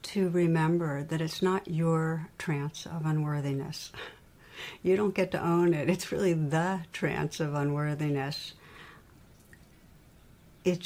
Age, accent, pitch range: 60-79, American, 155-185 Hz